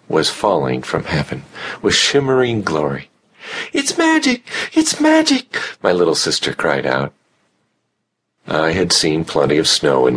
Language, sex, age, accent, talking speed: English, male, 50-69, American, 135 wpm